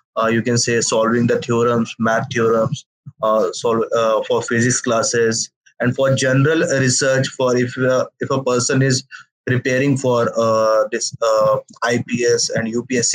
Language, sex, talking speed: English, male, 155 wpm